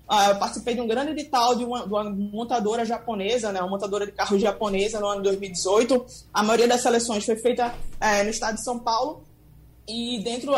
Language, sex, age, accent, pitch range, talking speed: Portuguese, female, 20-39, Brazilian, 210-255 Hz, 205 wpm